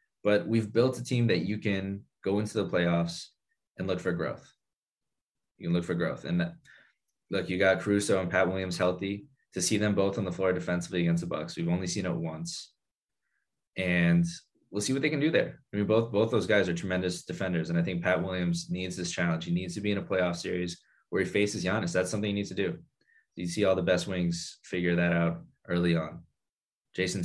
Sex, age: male, 20-39